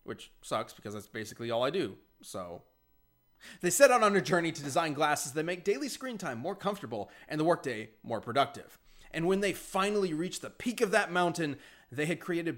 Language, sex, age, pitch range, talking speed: English, male, 20-39, 125-190 Hz, 205 wpm